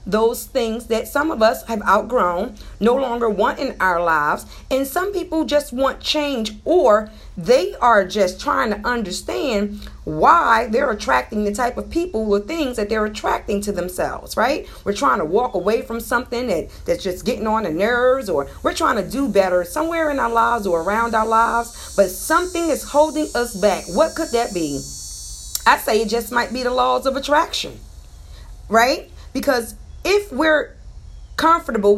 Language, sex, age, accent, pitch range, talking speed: English, female, 40-59, American, 205-285 Hz, 180 wpm